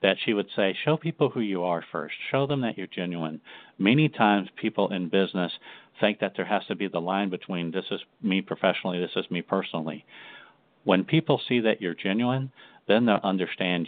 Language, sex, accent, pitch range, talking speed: English, male, American, 95-120 Hz, 200 wpm